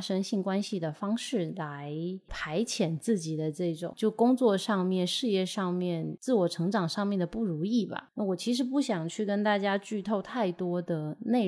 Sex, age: female, 20-39